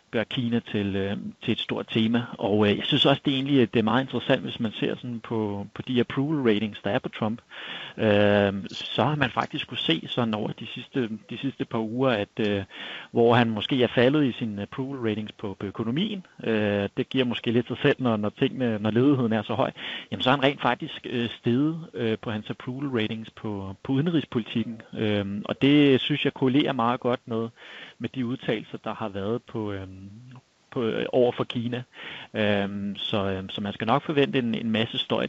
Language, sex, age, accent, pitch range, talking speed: Danish, male, 30-49, native, 105-130 Hz, 210 wpm